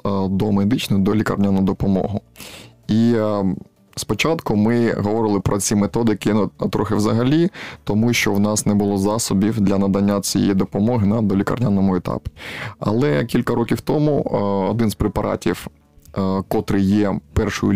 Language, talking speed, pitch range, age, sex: Ukrainian, 135 wpm, 100-115 Hz, 20-39, male